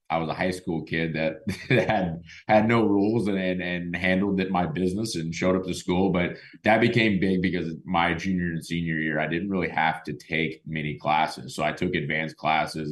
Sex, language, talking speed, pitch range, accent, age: male, English, 220 wpm, 75-90 Hz, American, 20-39